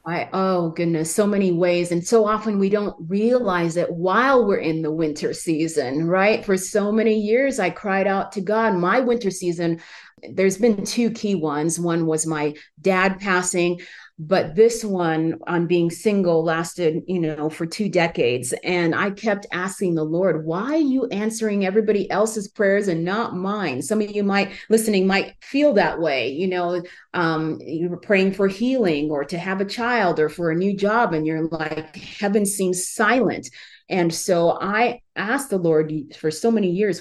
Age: 30-49